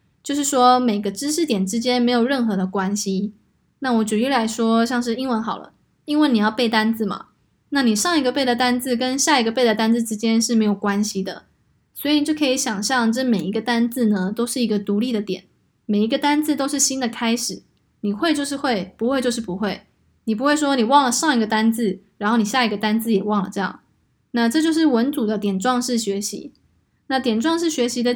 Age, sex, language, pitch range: 20-39, female, Chinese, 210-265 Hz